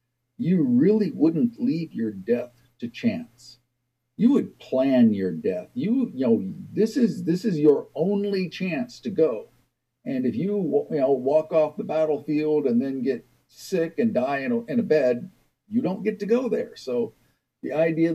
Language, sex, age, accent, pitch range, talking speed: English, male, 50-69, American, 135-220 Hz, 175 wpm